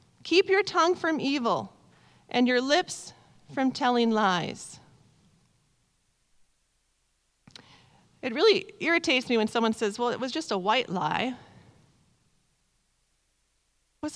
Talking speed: 110 wpm